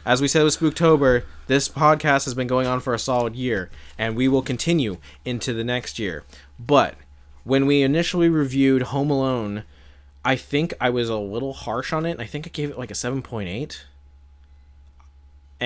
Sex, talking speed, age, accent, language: male, 180 wpm, 20-39, American, English